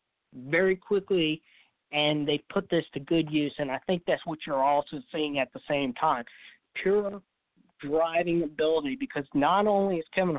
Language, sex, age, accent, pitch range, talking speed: English, male, 40-59, American, 145-185 Hz, 170 wpm